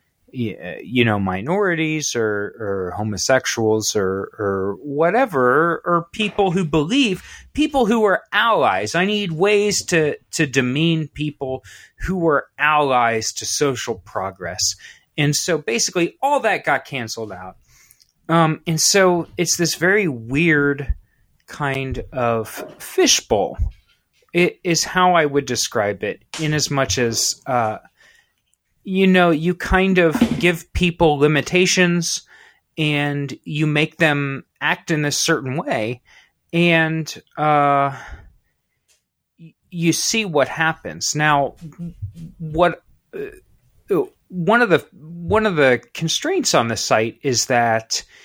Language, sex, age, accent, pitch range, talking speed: English, male, 30-49, American, 130-180 Hz, 120 wpm